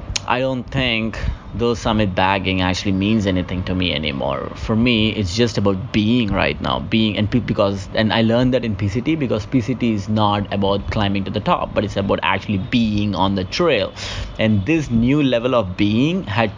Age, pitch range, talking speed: 20-39, 95-115 Hz, 195 wpm